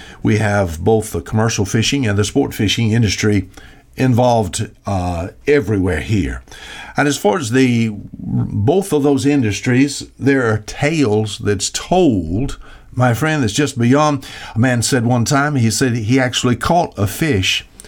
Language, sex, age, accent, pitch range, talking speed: English, male, 60-79, American, 105-140 Hz, 155 wpm